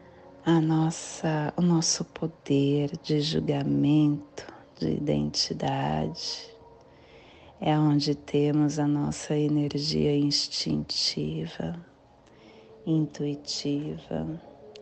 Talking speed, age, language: 70 wpm, 40-59, Portuguese